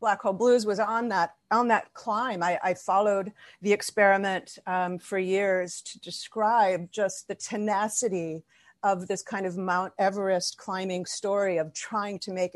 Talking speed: 160 wpm